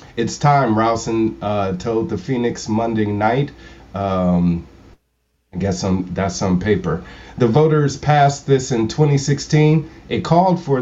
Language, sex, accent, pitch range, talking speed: English, male, American, 110-145 Hz, 140 wpm